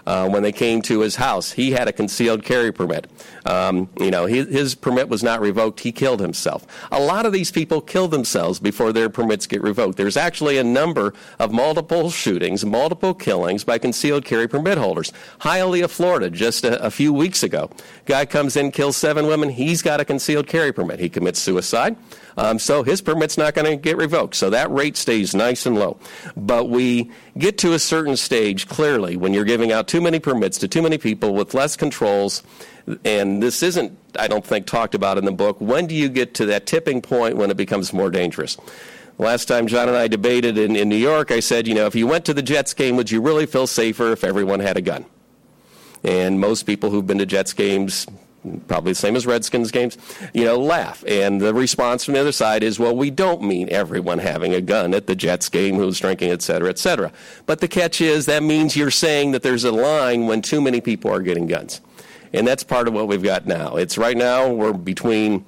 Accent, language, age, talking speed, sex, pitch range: American, English, 50-69, 220 wpm, male, 105-150 Hz